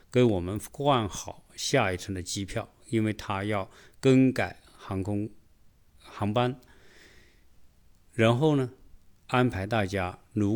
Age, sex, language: 50-69, male, Chinese